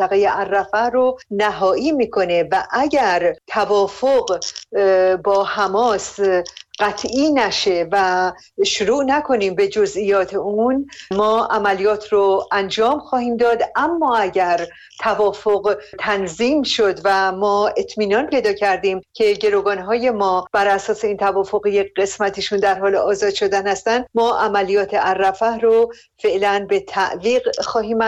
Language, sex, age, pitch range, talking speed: Persian, female, 50-69, 200-230 Hz, 120 wpm